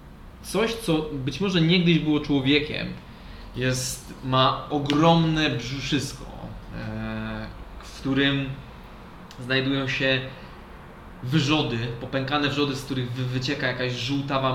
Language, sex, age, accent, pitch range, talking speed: Polish, male, 20-39, native, 130-145 Hz, 95 wpm